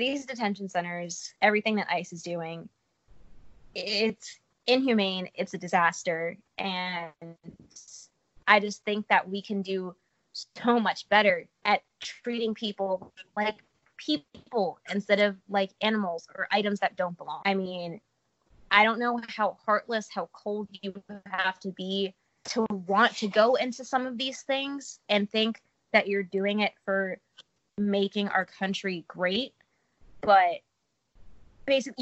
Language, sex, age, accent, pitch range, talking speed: English, female, 20-39, American, 185-225 Hz, 135 wpm